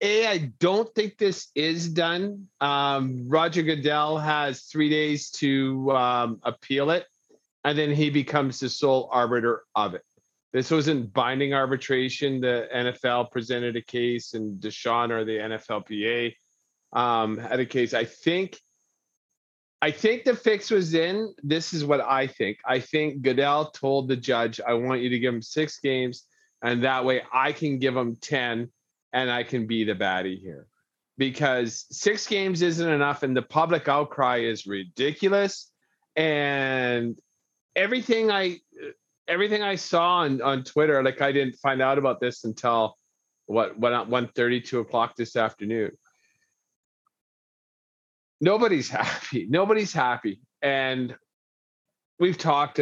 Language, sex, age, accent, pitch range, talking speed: English, male, 40-59, American, 120-160 Hz, 145 wpm